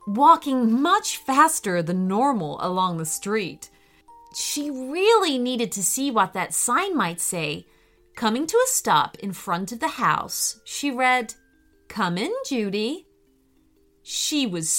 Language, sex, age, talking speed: English, female, 30-49, 140 wpm